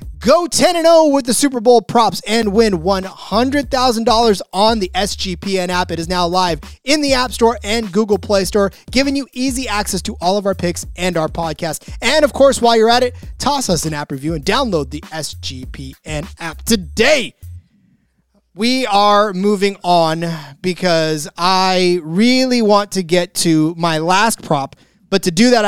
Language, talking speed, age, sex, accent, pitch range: English, 180 wpm, 30-49, male, American, 175-230 Hz